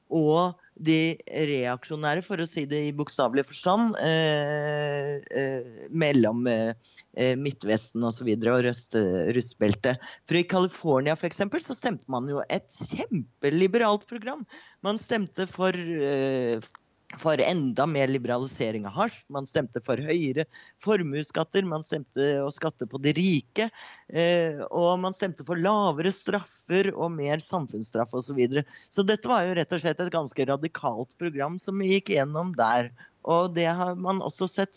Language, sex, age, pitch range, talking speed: English, male, 30-49, 130-180 Hz, 145 wpm